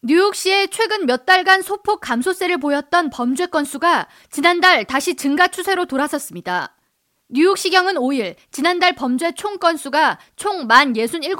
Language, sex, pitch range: Korean, female, 265-365 Hz